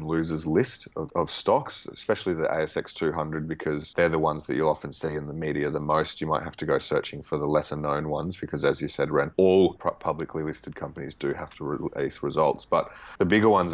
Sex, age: male, 30-49